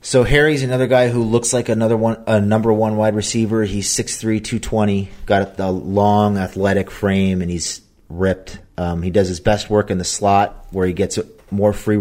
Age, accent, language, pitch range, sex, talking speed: 30-49, American, English, 90-105 Hz, male, 195 wpm